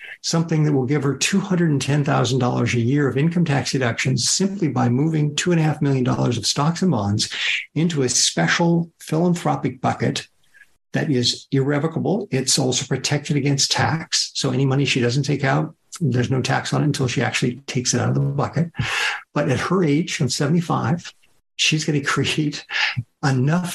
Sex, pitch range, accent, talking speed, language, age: male, 130-165 Hz, American, 165 wpm, English, 60-79